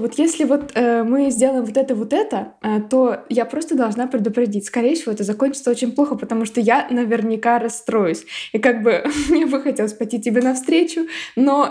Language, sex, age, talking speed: Russian, female, 20-39, 190 wpm